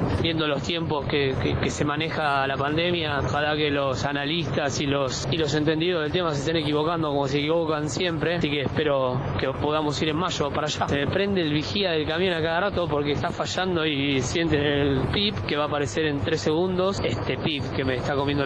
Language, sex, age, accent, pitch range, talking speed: Spanish, male, 20-39, Argentinian, 135-160 Hz, 220 wpm